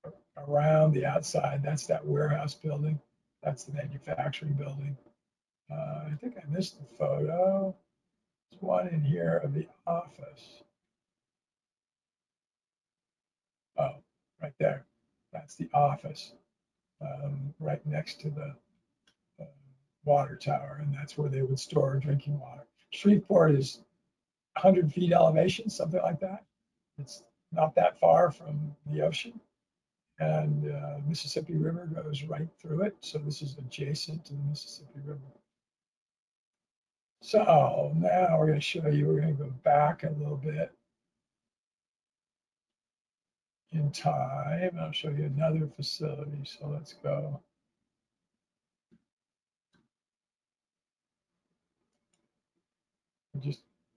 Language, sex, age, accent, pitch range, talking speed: English, male, 50-69, American, 145-160 Hz, 120 wpm